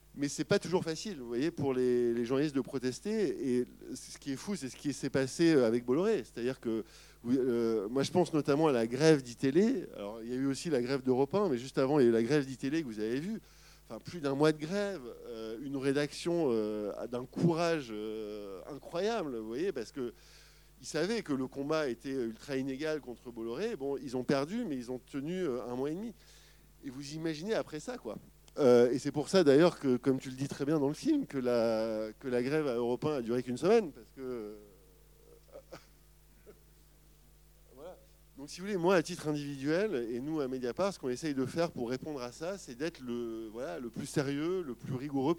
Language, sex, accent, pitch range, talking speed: French, male, French, 120-155 Hz, 220 wpm